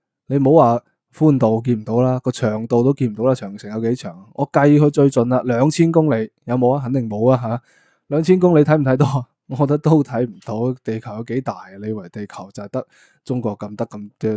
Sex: male